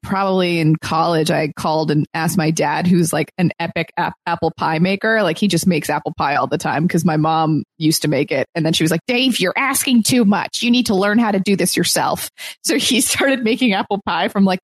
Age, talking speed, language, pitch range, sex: 20-39, 240 wpm, English, 170-230 Hz, female